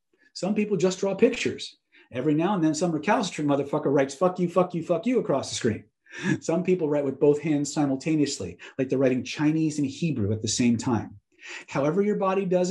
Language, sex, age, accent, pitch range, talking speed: English, male, 40-59, American, 130-185 Hz, 205 wpm